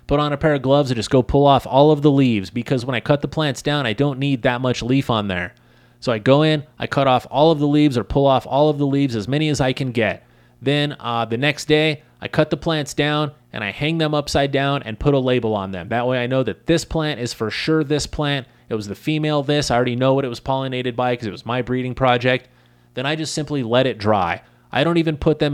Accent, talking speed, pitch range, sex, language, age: American, 280 wpm, 120-145 Hz, male, English, 30-49